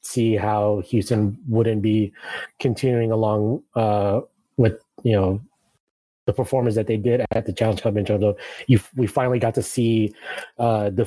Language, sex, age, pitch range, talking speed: English, male, 30-49, 105-120 Hz, 155 wpm